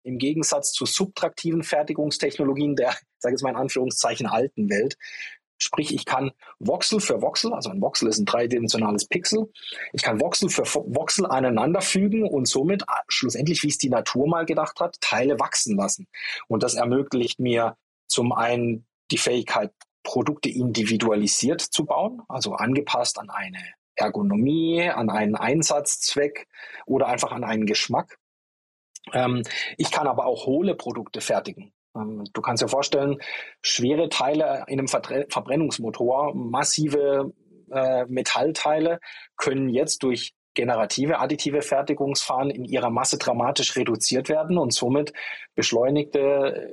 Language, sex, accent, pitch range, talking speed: German, male, German, 125-150 Hz, 135 wpm